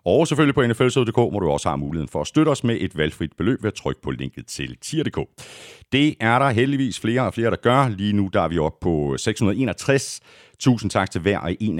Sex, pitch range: male, 85-130 Hz